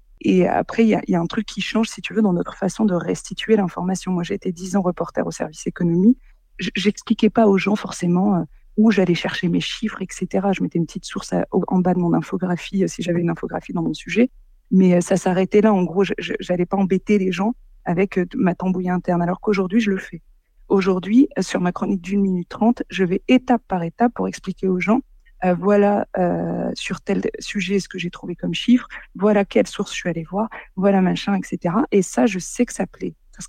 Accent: French